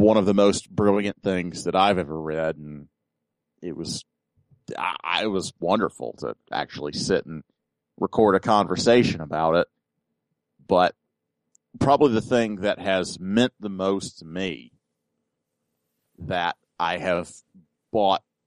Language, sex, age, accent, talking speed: English, male, 40-59, American, 135 wpm